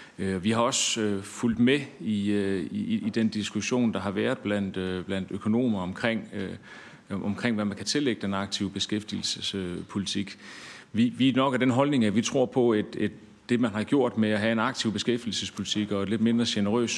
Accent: native